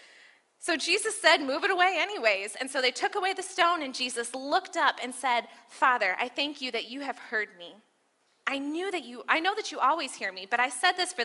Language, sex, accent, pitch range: English, female, American, 250-365 Hz